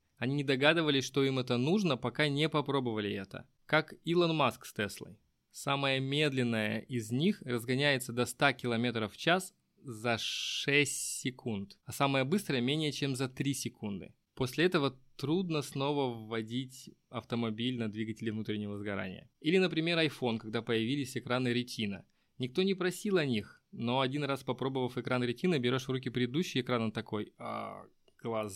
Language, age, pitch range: Russian, 20-39, 115-145 Hz